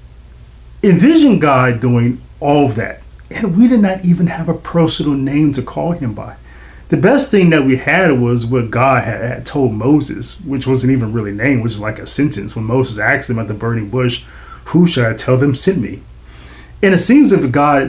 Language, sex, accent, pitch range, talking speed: English, male, American, 115-170 Hz, 200 wpm